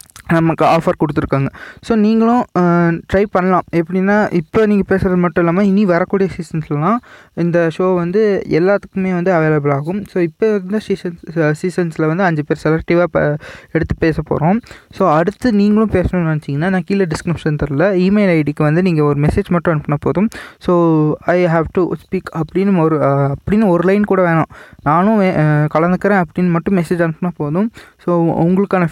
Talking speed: 155 wpm